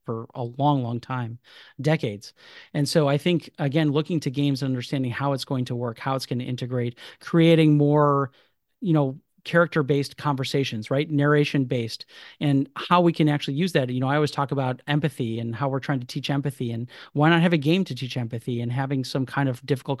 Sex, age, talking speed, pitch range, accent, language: male, 40-59, 210 wpm, 130-155 Hz, American, English